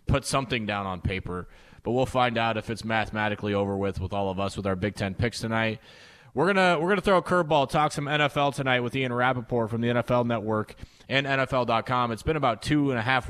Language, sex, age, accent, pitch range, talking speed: English, male, 30-49, American, 105-130 Hz, 235 wpm